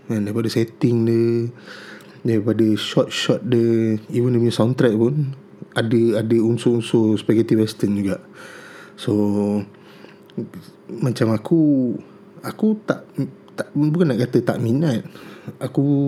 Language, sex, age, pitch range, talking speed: Malay, male, 20-39, 110-125 Hz, 110 wpm